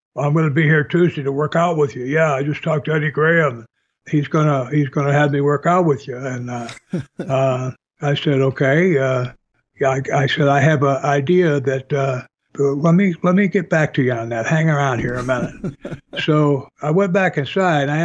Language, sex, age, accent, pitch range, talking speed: English, male, 60-79, American, 135-155 Hz, 230 wpm